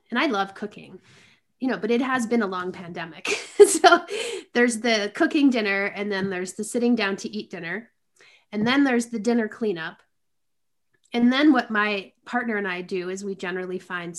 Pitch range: 195-250 Hz